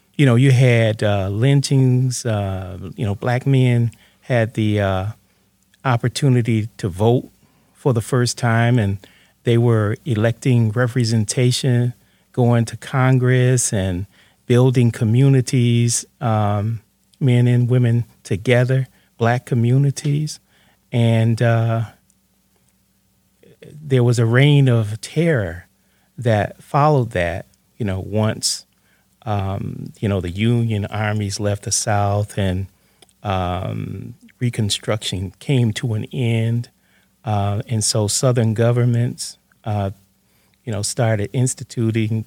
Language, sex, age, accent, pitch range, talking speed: English, male, 40-59, American, 100-125 Hz, 110 wpm